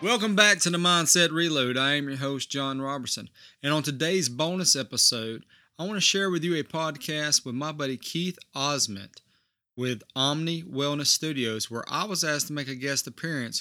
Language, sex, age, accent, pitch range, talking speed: English, male, 30-49, American, 135-175 Hz, 190 wpm